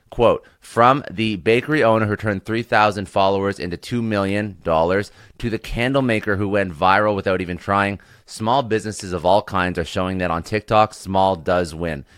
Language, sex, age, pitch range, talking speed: English, male, 30-49, 90-110 Hz, 170 wpm